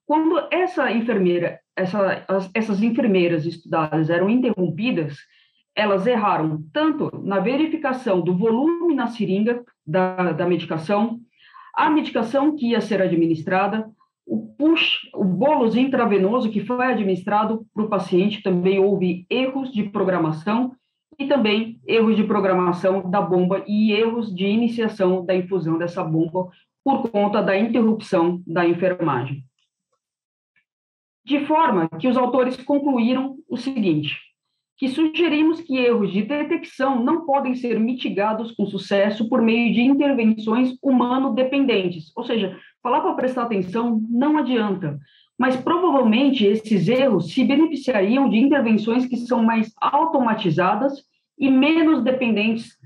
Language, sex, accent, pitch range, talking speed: Portuguese, female, Brazilian, 190-260 Hz, 125 wpm